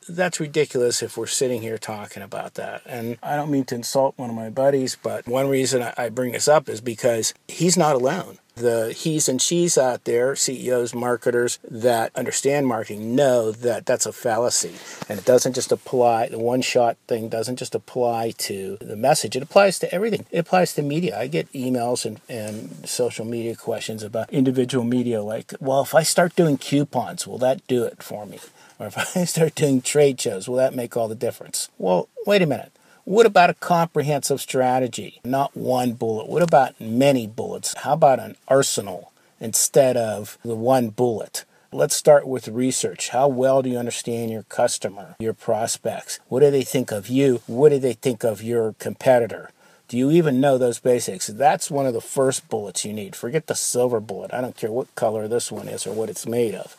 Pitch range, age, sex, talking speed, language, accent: 115-145 Hz, 50-69, male, 200 wpm, English, American